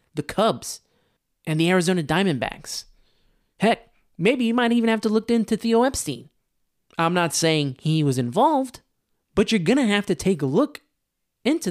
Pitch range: 140-190 Hz